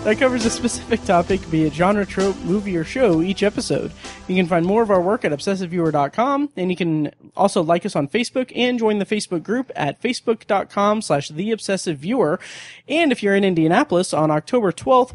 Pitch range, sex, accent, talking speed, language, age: 155-205 Hz, male, American, 185 wpm, English, 30-49